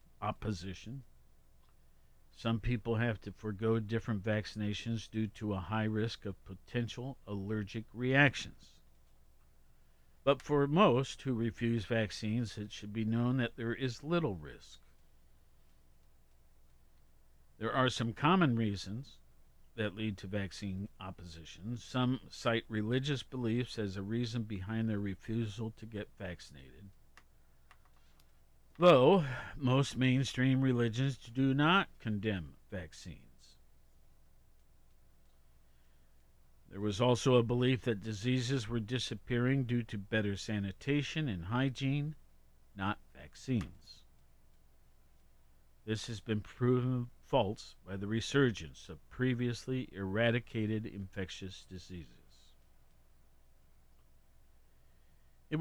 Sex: male